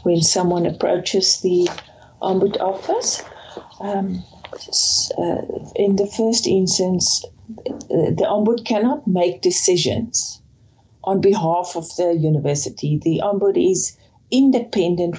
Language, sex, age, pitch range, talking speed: English, female, 50-69, 175-215 Hz, 105 wpm